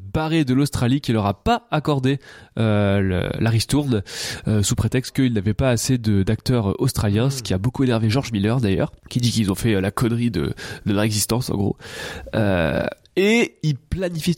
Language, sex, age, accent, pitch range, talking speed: French, male, 20-39, French, 105-130 Hz, 200 wpm